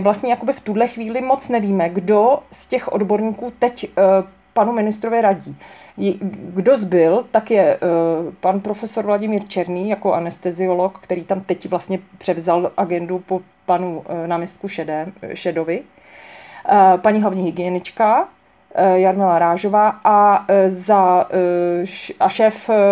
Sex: female